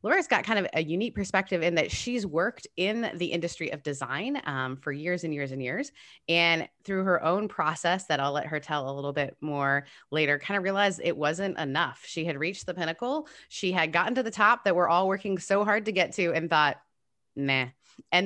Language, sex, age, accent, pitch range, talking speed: English, female, 20-39, American, 140-190 Hz, 225 wpm